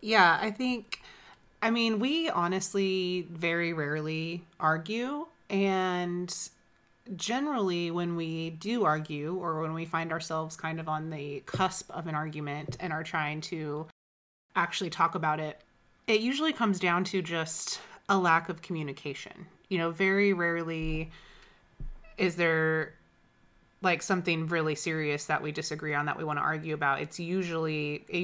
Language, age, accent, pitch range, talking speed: English, 30-49, American, 150-180 Hz, 150 wpm